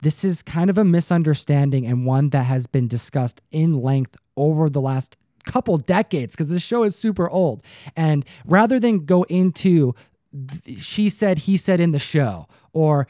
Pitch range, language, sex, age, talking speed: 125-170 Hz, English, male, 20-39, 180 wpm